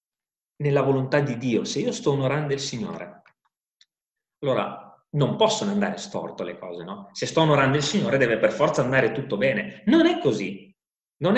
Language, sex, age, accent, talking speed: Italian, male, 30-49, native, 175 wpm